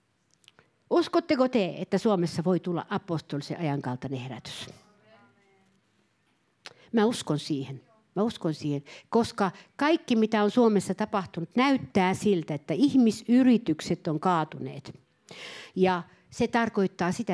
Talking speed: 105 wpm